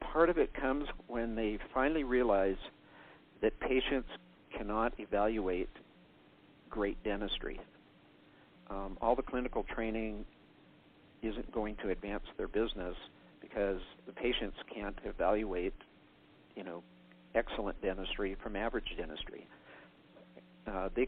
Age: 50-69